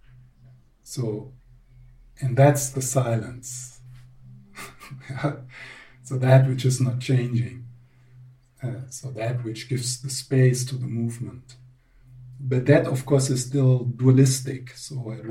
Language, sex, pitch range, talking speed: English, male, 120-130 Hz, 120 wpm